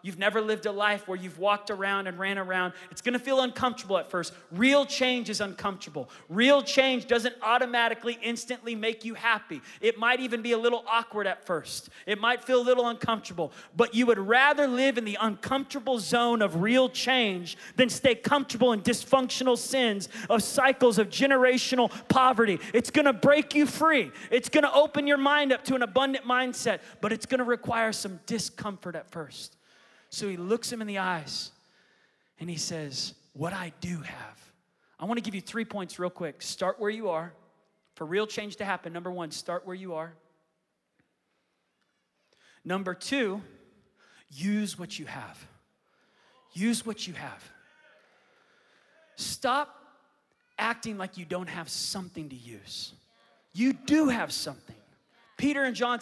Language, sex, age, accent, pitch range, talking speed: English, male, 30-49, American, 185-250 Hz, 165 wpm